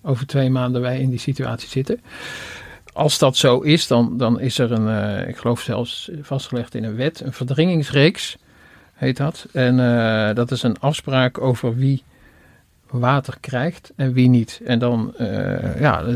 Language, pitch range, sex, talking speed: Dutch, 120-140 Hz, male, 175 wpm